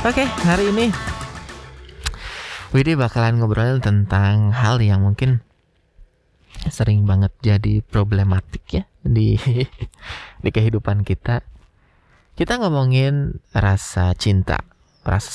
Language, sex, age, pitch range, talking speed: Indonesian, male, 20-39, 90-125 Hz, 100 wpm